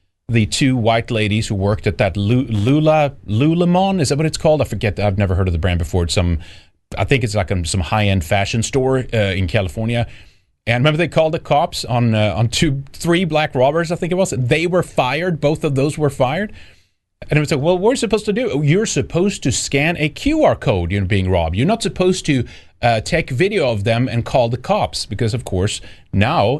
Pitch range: 100-145 Hz